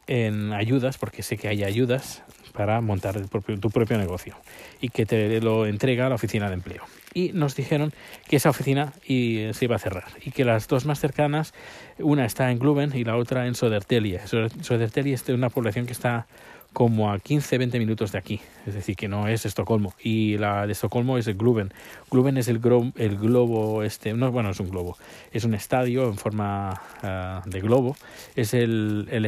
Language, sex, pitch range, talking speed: Spanish, male, 105-130 Hz, 205 wpm